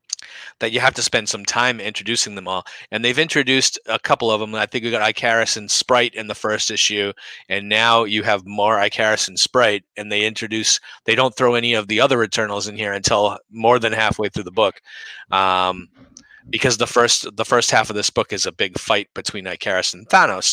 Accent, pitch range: American, 100-120 Hz